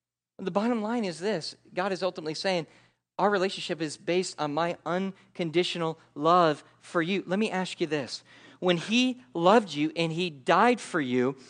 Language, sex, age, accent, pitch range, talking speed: English, male, 40-59, American, 170-245 Hz, 170 wpm